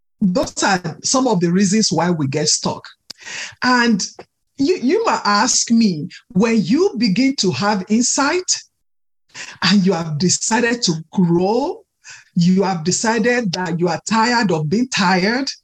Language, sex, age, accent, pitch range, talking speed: English, male, 50-69, Nigerian, 195-285 Hz, 145 wpm